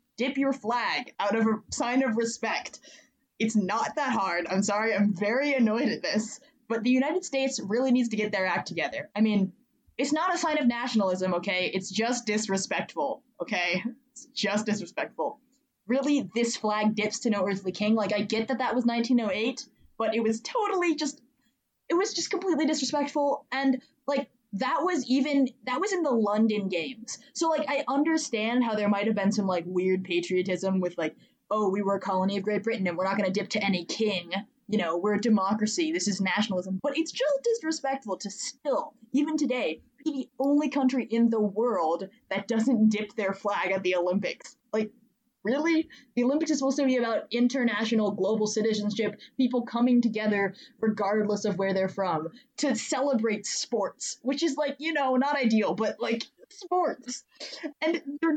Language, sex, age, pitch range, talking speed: English, female, 20-39, 210-280 Hz, 185 wpm